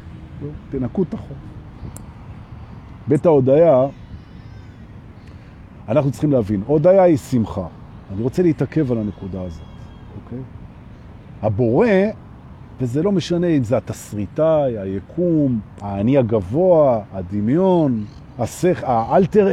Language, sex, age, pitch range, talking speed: Hebrew, male, 40-59, 110-175 Hz, 90 wpm